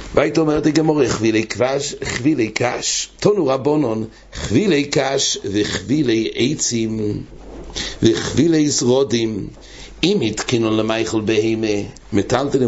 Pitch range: 105-140 Hz